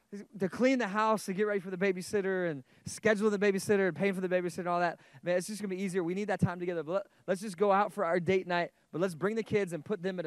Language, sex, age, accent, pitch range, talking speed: English, male, 20-39, American, 180-220 Hz, 300 wpm